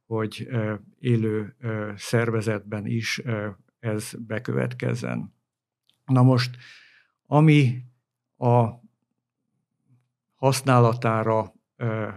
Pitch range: 110-125 Hz